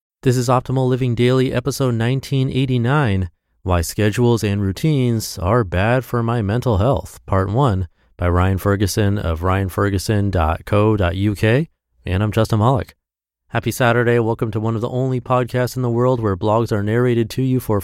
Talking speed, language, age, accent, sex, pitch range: 160 wpm, English, 30-49, American, male, 90-120 Hz